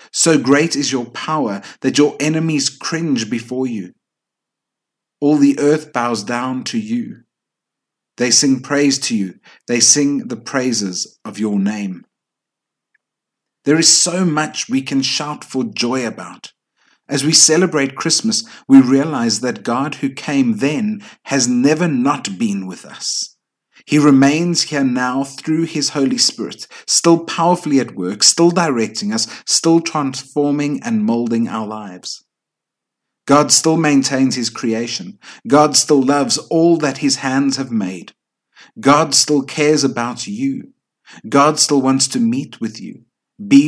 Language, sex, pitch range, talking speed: English, male, 125-160 Hz, 145 wpm